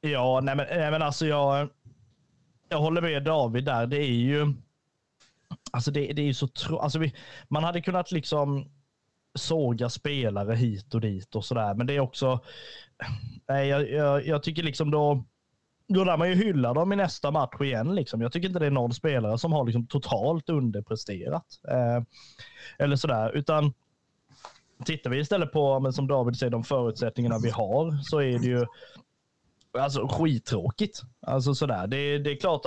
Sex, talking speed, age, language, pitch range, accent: male, 180 wpm, 20-39, Swedish, 125-155 Hz, native